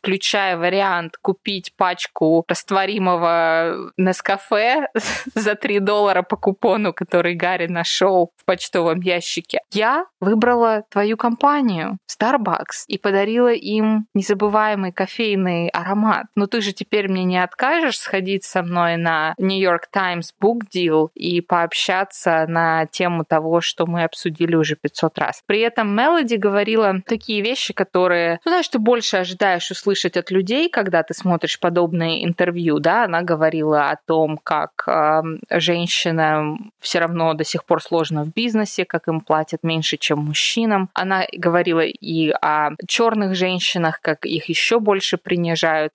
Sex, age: female, 20-39